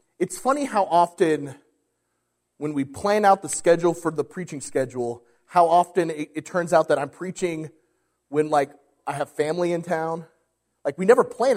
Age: 30-49